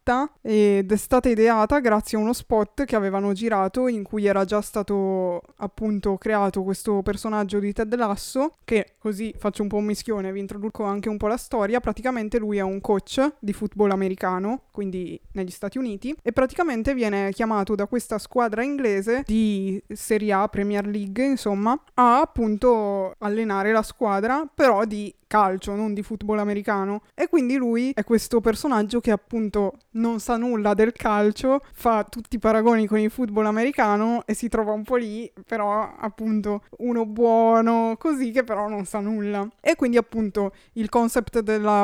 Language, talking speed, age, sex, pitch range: Italian, 170 wpm, 20-39, female, 205-230 Hz